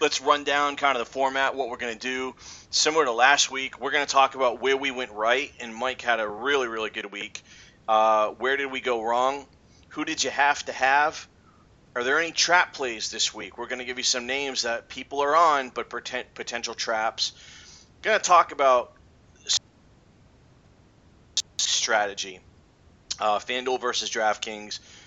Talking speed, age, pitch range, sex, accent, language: 180 wpm, 40-59, 110-130 Hz, male, American, English